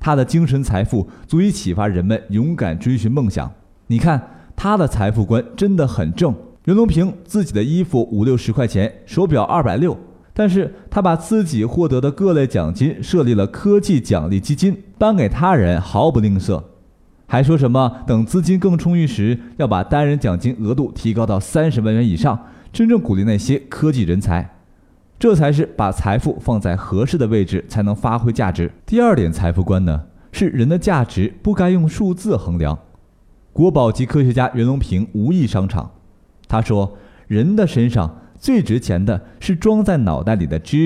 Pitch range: 100-165 Hz